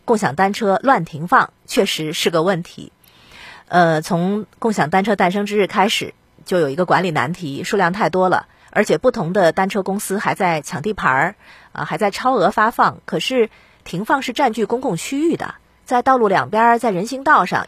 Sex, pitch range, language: female, 170-245 Hz, Chinese